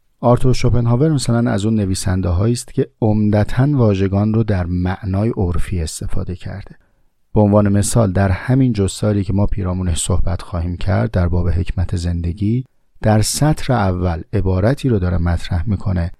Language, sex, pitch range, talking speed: Persian, male, 90-115 Hz, 150 wpm